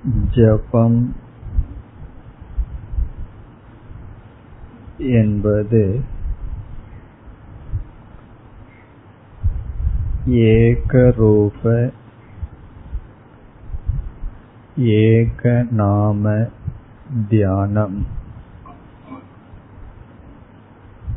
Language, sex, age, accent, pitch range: Tamil, male, 50-69, native, 105-115 Hz